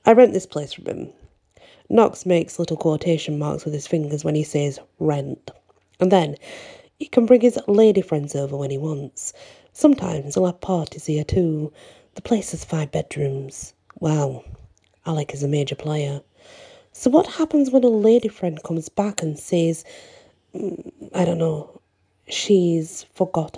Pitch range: 150-215 Hz